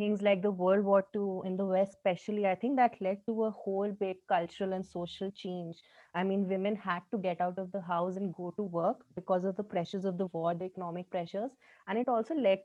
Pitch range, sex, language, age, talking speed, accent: 180-220 Hz, female, English, 20-39, 235 wpm, Indian